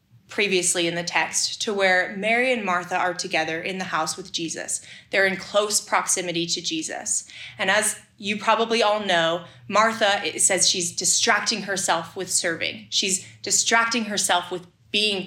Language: English